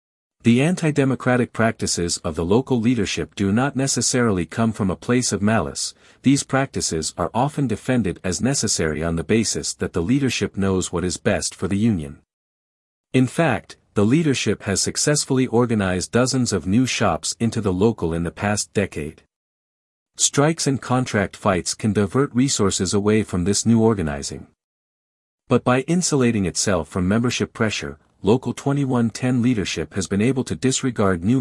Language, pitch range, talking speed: English, 95-125 Hz, 155 wpm